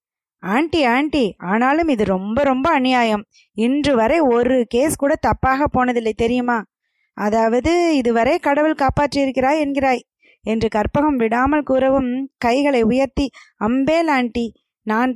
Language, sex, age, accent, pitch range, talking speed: Tamil, female, 20-39, native, 230-290 Hz, 110 wpm